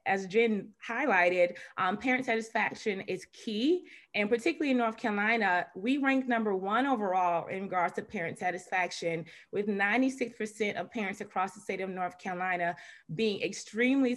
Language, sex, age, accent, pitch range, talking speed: English, female, 20-39, American, 180-220 Hz, 150 wpm